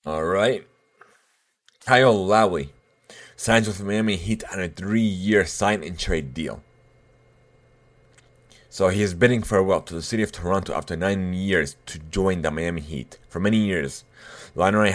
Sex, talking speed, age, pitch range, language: male, 140 wpm, 30-49, 90-110 Hz, English